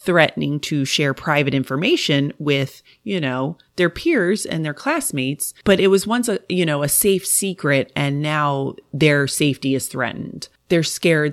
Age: 30-49